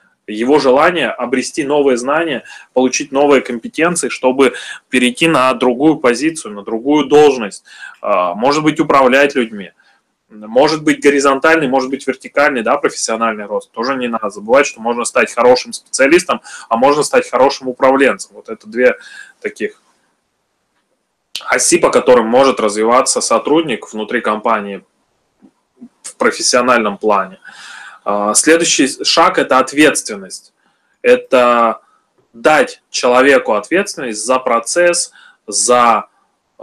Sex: male